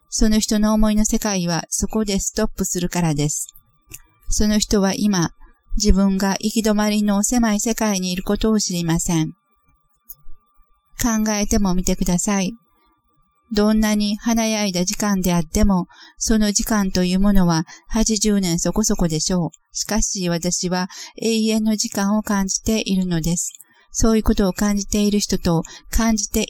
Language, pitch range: Japanese, 180-215 Hz